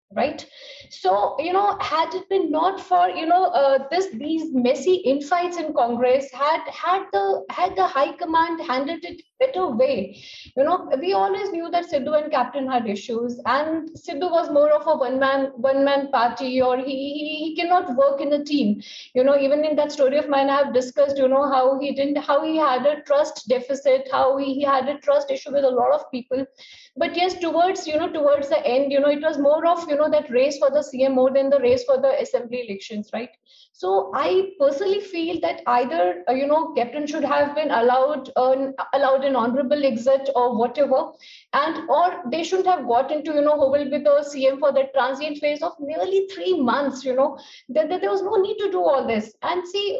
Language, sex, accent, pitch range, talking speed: English, female, Indian, 265-320 Hz, 210 wpm